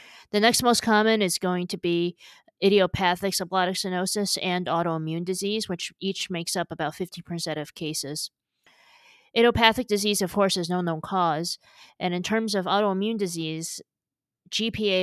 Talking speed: 150 wpm